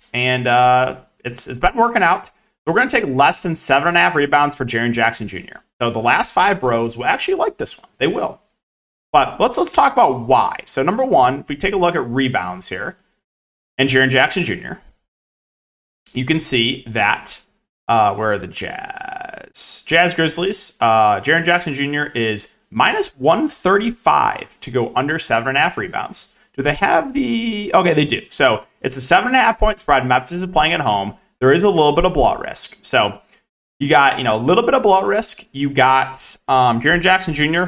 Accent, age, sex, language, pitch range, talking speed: American, 30-49, male, English, 115-175 Hz, 200 wpm